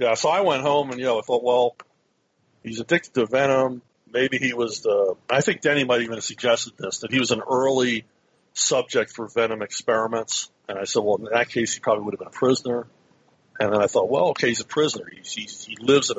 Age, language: 50-69, English